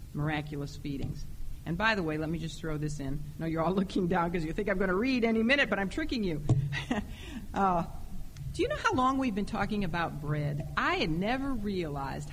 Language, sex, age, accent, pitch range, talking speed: English, female, 50-69, American, 175-230 Hz, 225 wpm